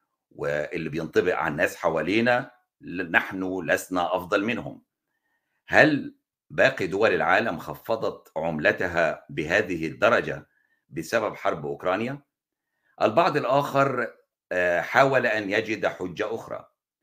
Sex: male